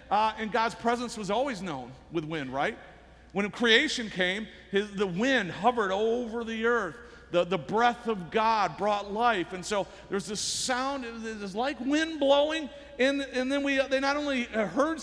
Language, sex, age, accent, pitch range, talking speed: English, male, 50-69, American, 225-285 Hz, 175 wpm